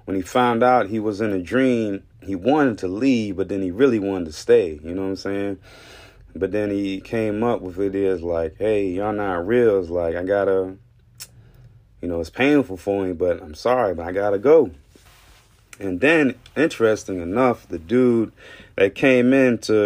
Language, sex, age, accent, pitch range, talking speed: English, male, 30-49, American, 90-115 Hz, 200 wpm